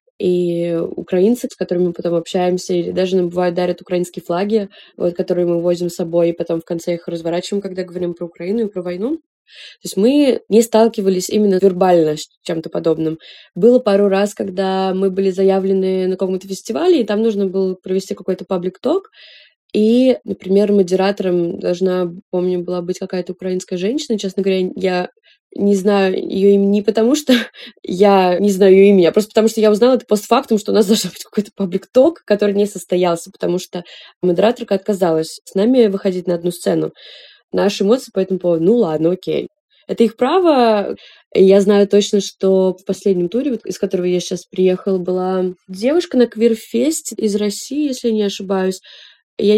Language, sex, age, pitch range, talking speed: Russian, female, 20-39, 180-215 Hz, 175 wpm